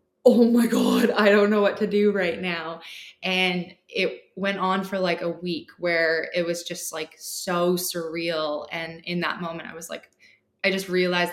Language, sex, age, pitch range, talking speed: English, female, 20-39, 170-195 Hz, 190 wpm